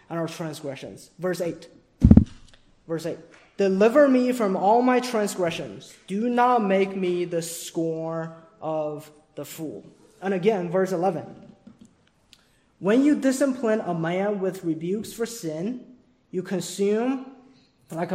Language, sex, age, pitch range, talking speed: English, male, 20-39, 165-205 Hz, 125 wpm